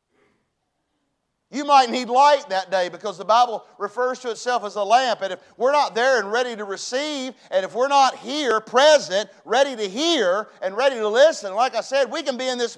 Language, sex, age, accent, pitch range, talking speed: English, male, 40-59, American, 175-240 Hz, 210 wpm